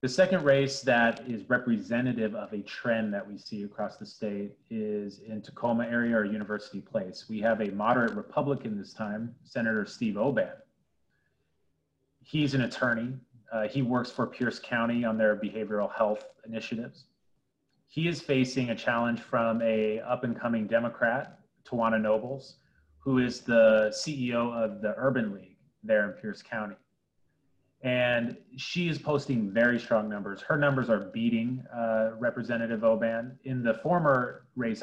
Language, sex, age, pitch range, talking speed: English, male, 30-49, 110-130 Hz, 155 wpm